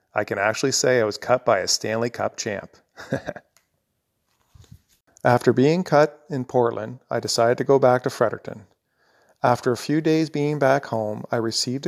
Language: English